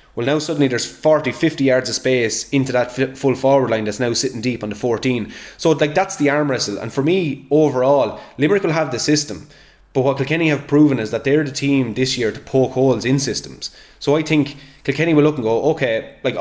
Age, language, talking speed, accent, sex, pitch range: 20-39, English, 230 wpm, Irish, male, 115-140 Hz